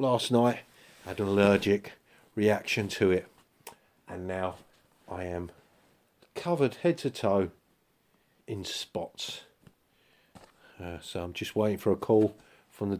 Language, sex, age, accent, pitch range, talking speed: English, male, 40-59, British, 100-150 Hz, 130 wpm